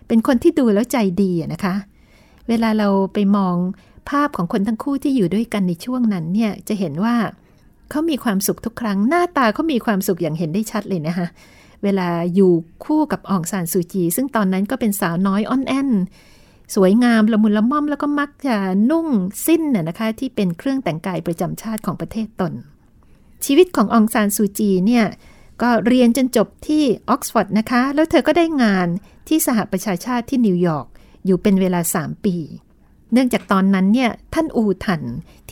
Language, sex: Thai, female